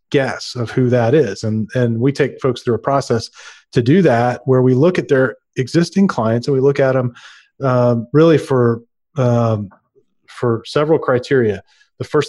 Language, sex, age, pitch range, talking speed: English, male, 40-59, 125-145 Hz, 180 wpm